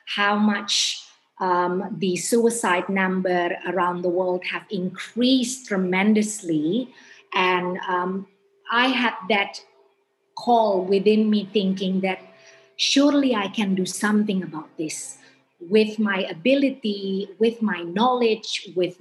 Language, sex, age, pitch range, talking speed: English, female, 30-49, 185-220 Hz, 115 wpm